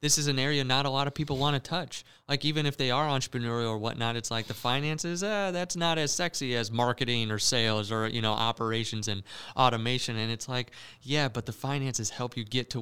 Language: English